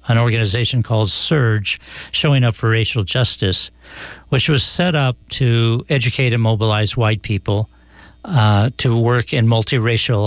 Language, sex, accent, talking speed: English, male, American, 140 wpm